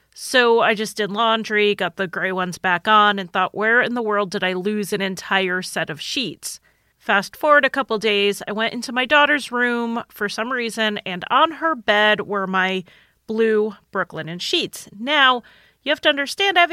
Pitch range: 205-255 Hz